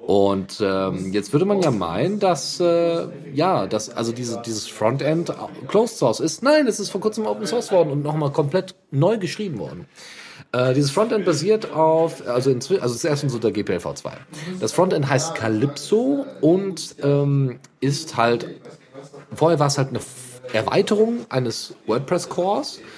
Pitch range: 120-170 Hz